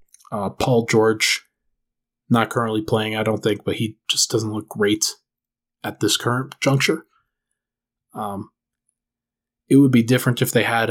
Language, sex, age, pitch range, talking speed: English, male, 20-39, 110-135 Hz, 150 wpm